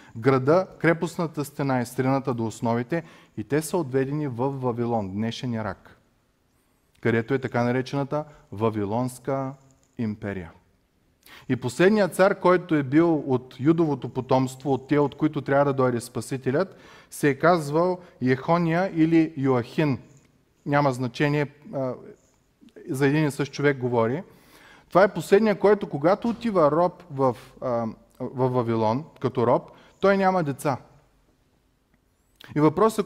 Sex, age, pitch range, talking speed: male, 20-39, 130-175 Hz, 125 wpm